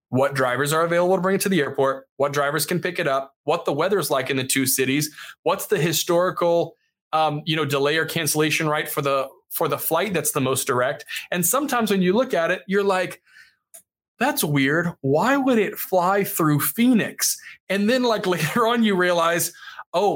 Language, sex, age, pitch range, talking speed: English, male, 20-39, 150-205 Hz, 200 wpm